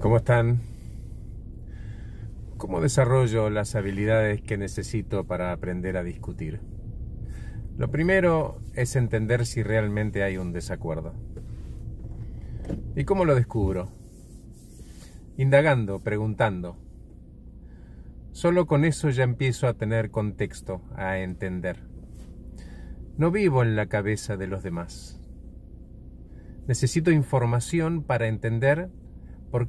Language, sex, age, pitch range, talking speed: Spanish, male, 40-59, 85-135 Hz, 100 wpm